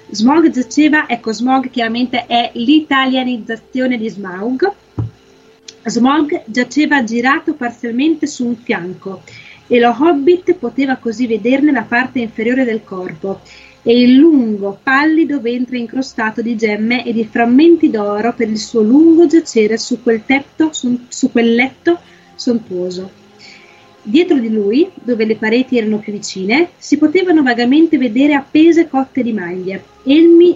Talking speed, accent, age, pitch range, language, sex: 135 wpm, native, 30-49, 225-290 Hz, Italian, female